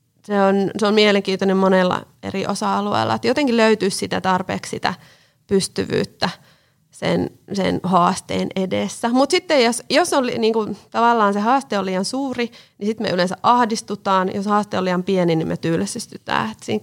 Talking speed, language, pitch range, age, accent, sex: 170 wpm, Finnish, 175-210 Hz, 30-49, native, female